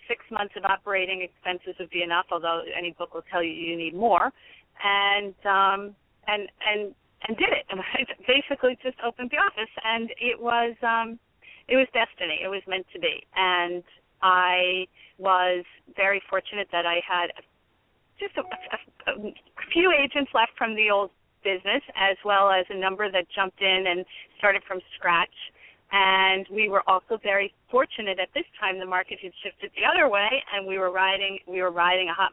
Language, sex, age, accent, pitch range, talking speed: English, female, 40-59, American, 185-230 Hz, 180 wpm